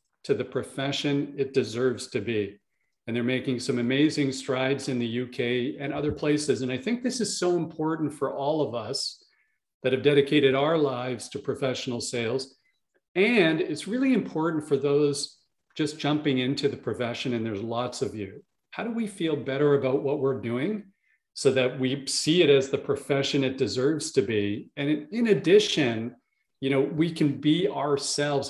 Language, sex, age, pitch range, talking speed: English, male, 40-59, 130-160 Hz, 175 wpm